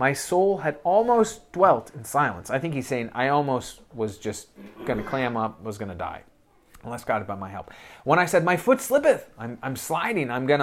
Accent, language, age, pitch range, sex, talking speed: American, English, 30-49, 115-170 Hz, male, 225 wpm